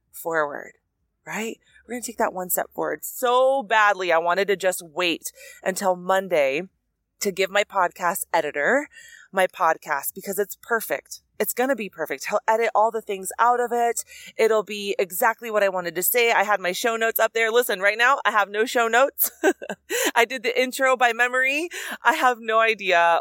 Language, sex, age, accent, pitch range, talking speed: English, female, 30-49, American, 180-235 Hz, 195 wpm